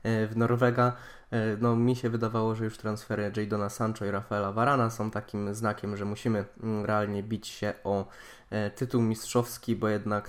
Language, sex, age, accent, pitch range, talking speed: Polish, male, 20-39, native, 105-125 Hz, 155 wpm